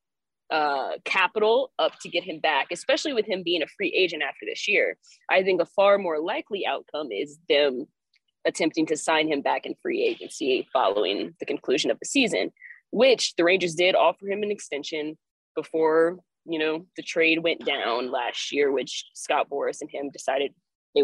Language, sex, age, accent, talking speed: English, female, 20-39, American, 185 wpm